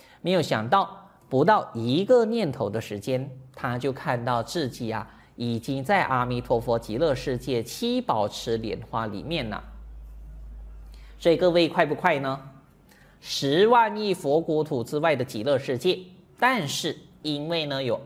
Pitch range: 120-185 Hz